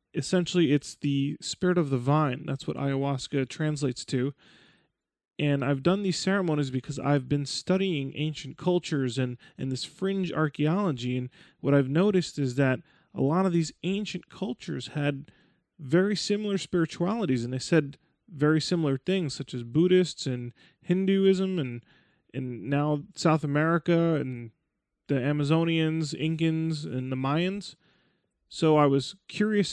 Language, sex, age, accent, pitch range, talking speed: English, male, 20-39, American, 135-165 Hz, 145 wpm